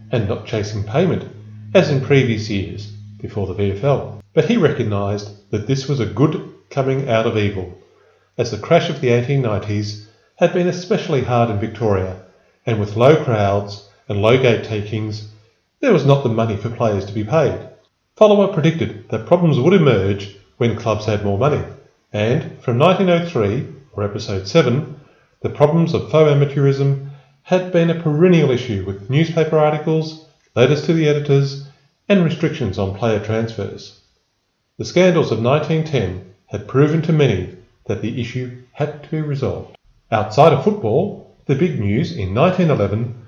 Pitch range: 105-155 Hz